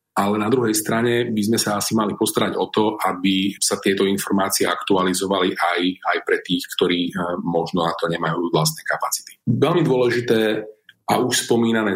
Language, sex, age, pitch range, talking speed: Slovak, male, 40-59, 95-120 Hz, 165 wpm